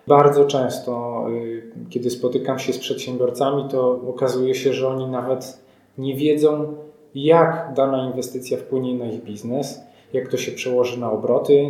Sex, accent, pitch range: male, native, 125-145 Hz